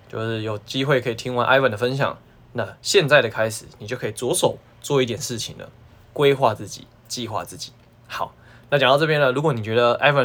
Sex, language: male, Chinese